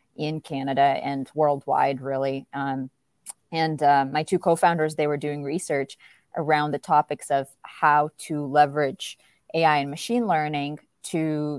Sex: female